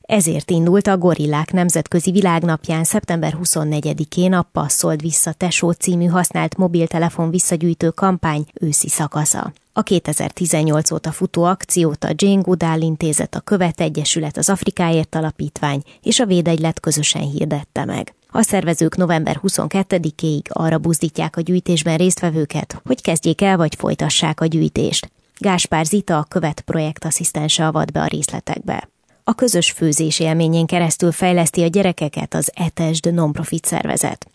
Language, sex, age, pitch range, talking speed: Hungarian, female, 20-39, 160-180 Hz, 130 wpm